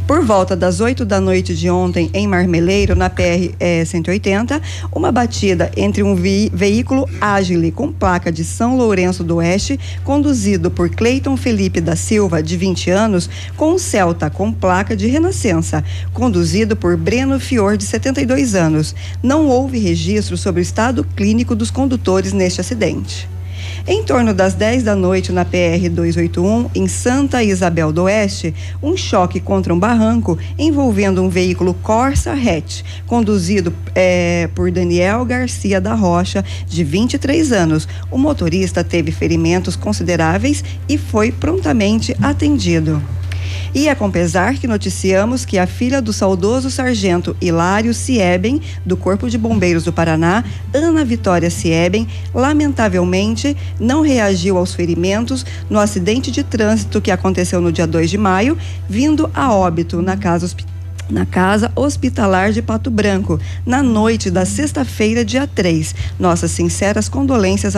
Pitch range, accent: 90-105 Hz, Brazilian